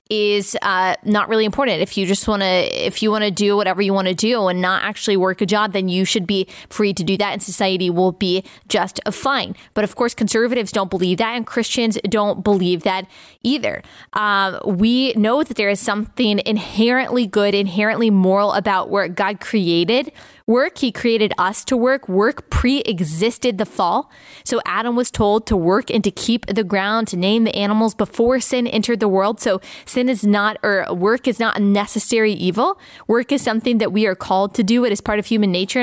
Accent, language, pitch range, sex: American, English, 195-235 Hz, female